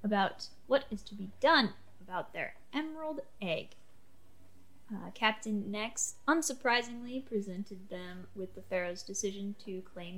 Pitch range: 185-240 Hz